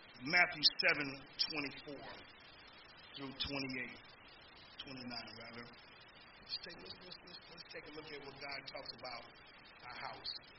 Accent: American